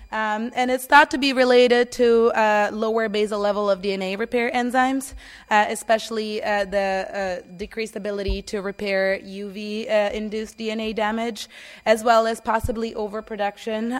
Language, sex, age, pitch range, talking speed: English, female, 20-39, 200-235 Hz, 145 wpm